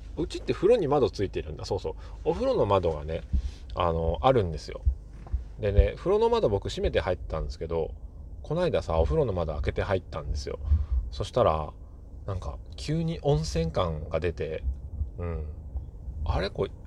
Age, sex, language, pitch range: 30-49, male, Japanese, 80-120 Hz